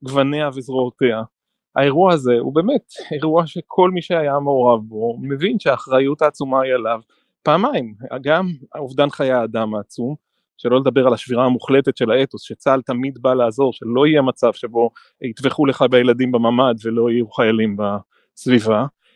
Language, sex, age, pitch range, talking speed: Hebrew, male, 30-49, 125-160 Hz, 145 wpm